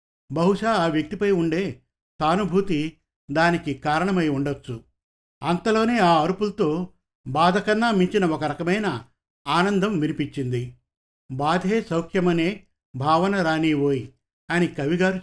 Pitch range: 150-190 Hz